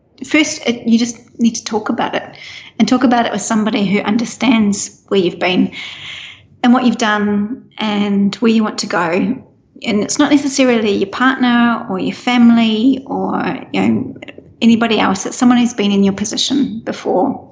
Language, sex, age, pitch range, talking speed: English, female, 30-49, 210-250 Hz, 180 wpm